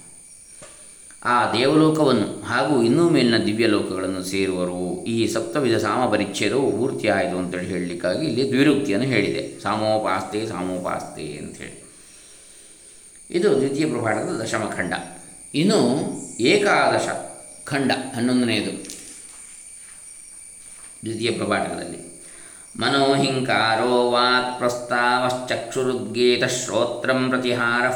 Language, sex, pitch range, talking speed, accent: Kannada, male, 115-130 Hz, 70 wpm, native